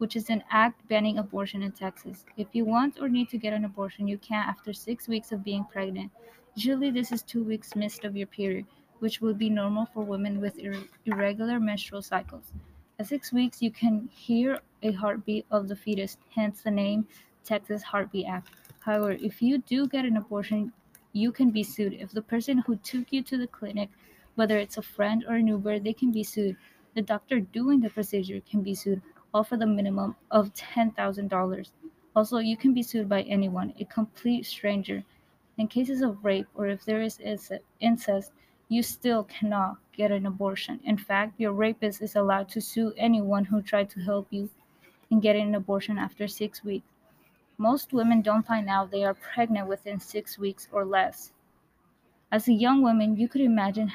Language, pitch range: English, 200-230 Hz